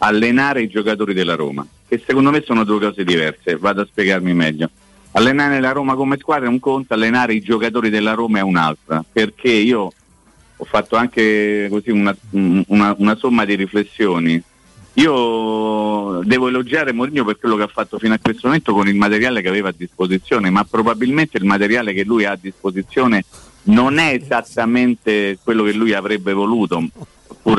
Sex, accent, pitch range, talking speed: male, native, 95-125 Hz, 175 wpm